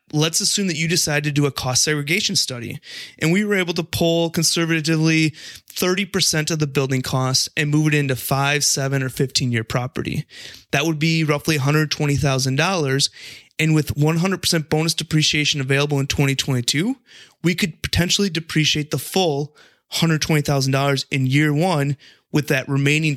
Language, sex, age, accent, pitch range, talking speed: English, male, 30-49, American, 135-165 Hz, 155 wpm